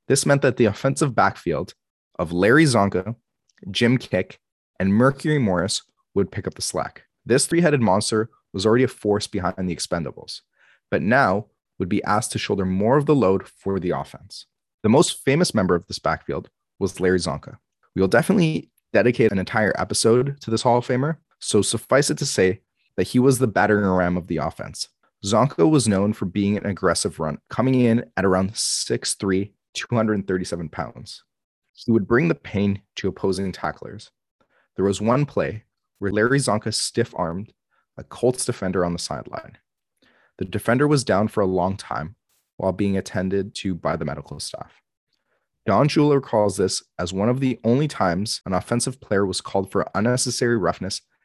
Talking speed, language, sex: 175 wpm, English, male